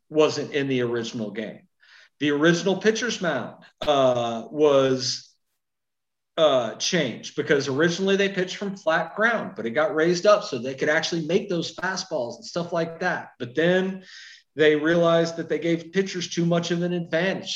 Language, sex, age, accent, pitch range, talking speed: English, male, 40-59, American, 155-195 Hz, 165 wpm